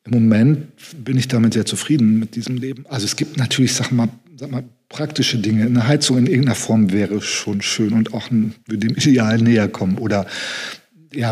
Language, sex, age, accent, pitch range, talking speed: German, male, 40-59, German, 110-125 Hz, 200 wpm